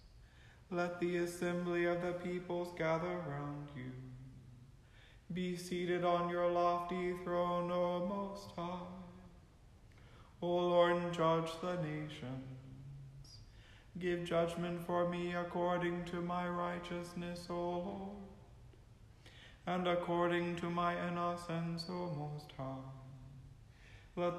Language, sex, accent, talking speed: English, male, American, 105 wpm